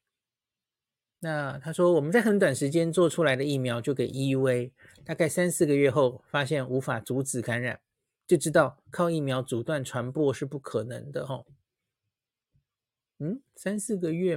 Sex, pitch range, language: male, 130-170 Hz, Chinese